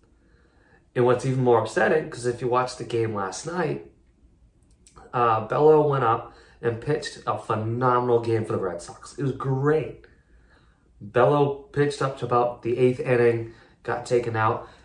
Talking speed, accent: 160 wpm, American